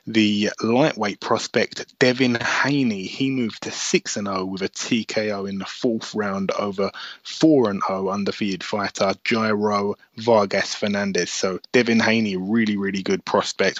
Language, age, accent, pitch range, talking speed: English, 20-39, British, 105-120 Hz, 130 wpm